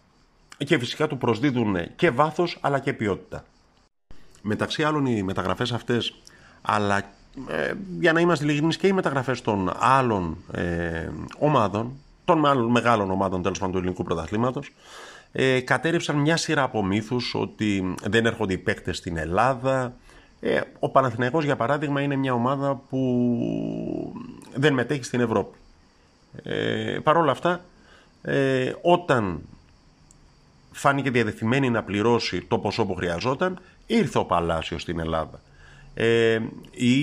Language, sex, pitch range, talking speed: Greek, male, 100-140 Hz, 130 wpm